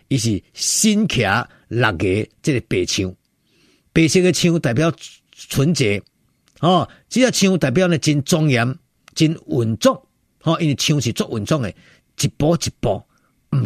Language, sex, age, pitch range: Chinese, male, 50-69, 110-160 Hz